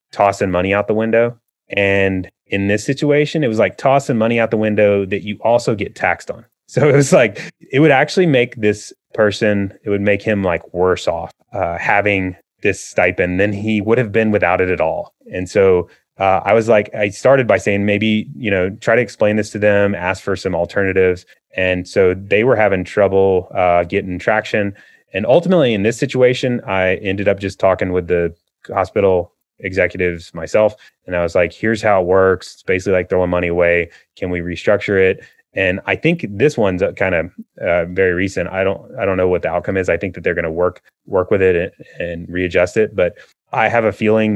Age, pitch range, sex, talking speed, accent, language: 30-49, 95-115 Hz, male, 210 wpm, American, English